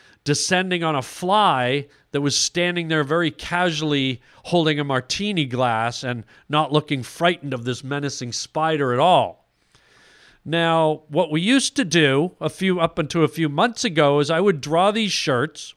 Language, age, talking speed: English, 50-69, 165 wpm